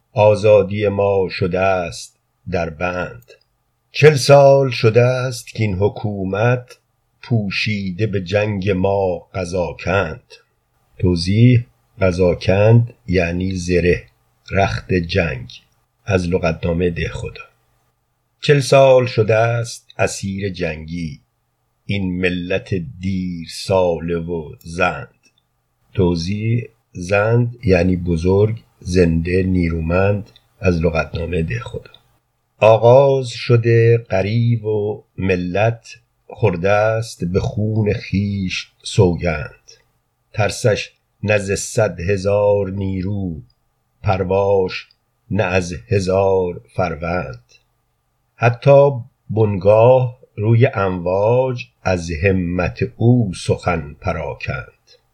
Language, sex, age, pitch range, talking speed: Persian, male, 50-69, 90-115 Hz, 85 wpm